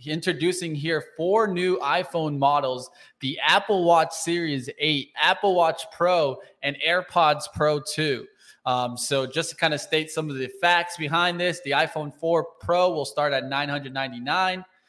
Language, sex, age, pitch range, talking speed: English, male, 20-39, 140-170 Hz, 155 wpm